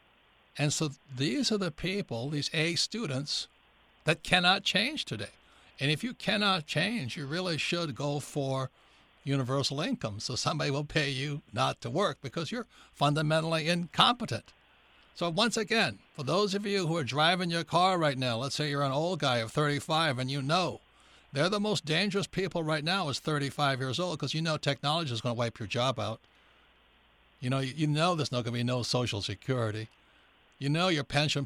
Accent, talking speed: American, 190 wpm